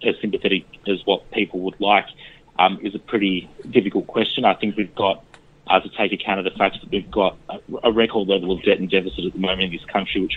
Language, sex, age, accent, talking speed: English, male, 30-49, Australian, 235 wpm